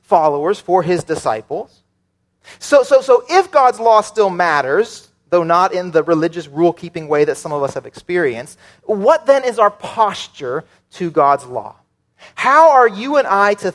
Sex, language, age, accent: male, English, 30-49, American